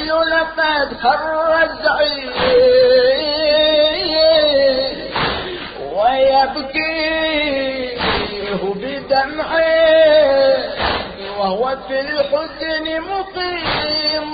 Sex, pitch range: male, 205-300 Hz